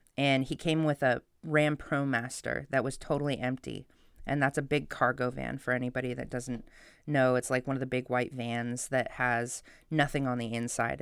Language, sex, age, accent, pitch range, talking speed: English, female, 20-39, American, 130-150 Hz, 195 wpm